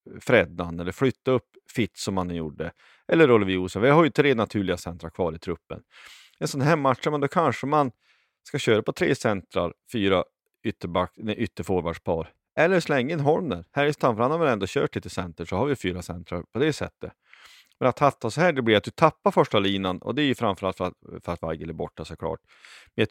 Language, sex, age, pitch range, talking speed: Swedish, male, 30-49, 90-125 Hz, 220 wpm